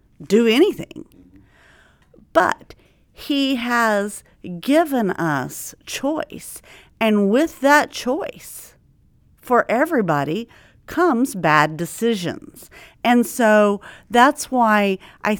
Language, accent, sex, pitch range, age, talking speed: English, American, female, 175-240 Hz, 50-69, 85 wpm